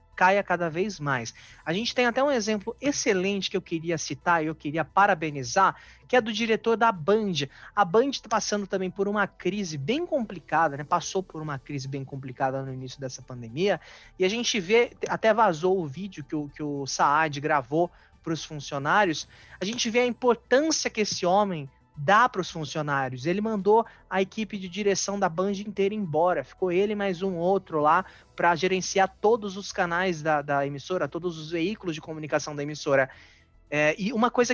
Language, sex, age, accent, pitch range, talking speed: Portuguese, male, 20-39, Brazilian, 150-205 Hz, 190 wpm